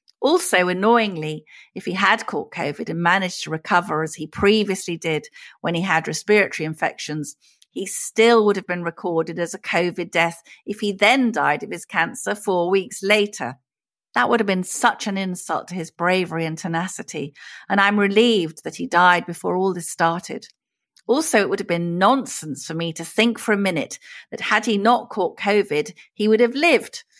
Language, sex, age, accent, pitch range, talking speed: English, female, 40-59, British, 170-220 Hz, 190 wpm